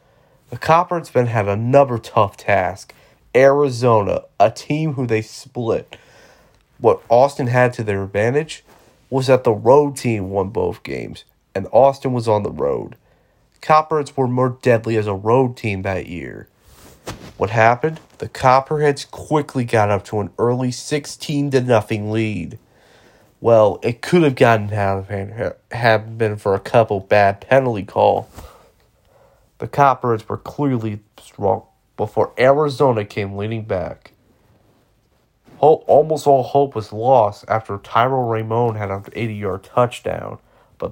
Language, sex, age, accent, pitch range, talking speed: English, male, 30-49, American, 110-140 Hz, 140 wpm